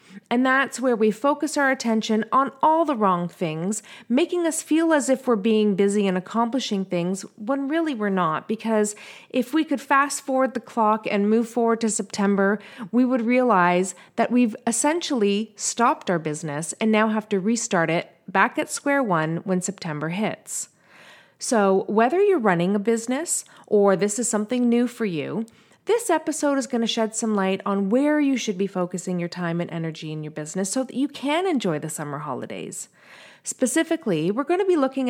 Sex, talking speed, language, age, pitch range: female, 190 wpm, English, 30-49, 190-260 Hz